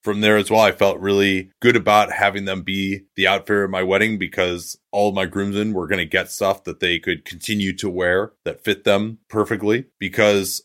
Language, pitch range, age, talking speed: English, 95-120 Hz, 30-49, 215 wpm